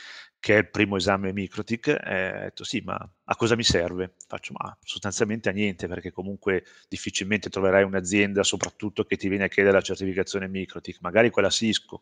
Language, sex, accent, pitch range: Italian, male, native, 95-115 Hz